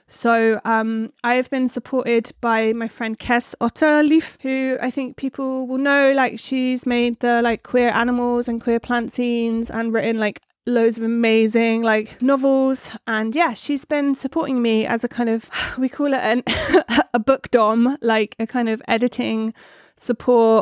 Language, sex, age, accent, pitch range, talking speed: English, female, 30-49, British, 225-255 Hz, 165 wpm